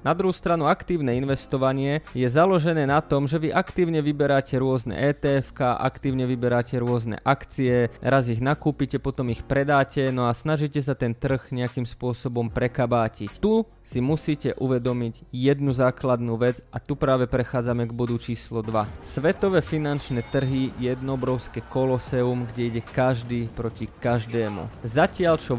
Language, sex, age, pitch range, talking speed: Slovak, male, 20-39, 125-150 Hz, 145 wpm